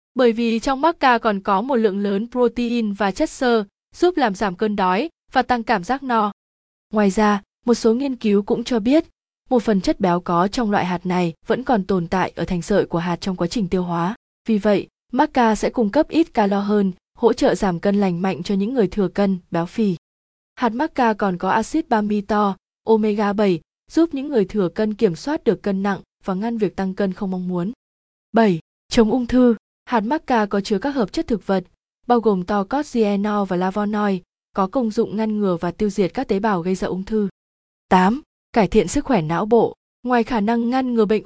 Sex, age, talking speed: female, 20-39, 215 wpm